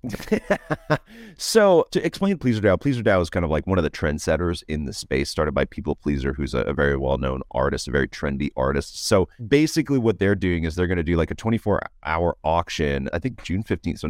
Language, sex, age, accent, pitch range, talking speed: English, male, 30-49, American, 80-115 Hz, 210 wpm